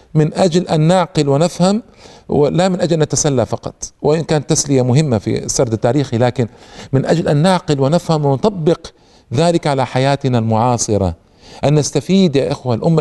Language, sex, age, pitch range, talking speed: Arabic, male, 50-69, 130-175 Hz, 155 wpm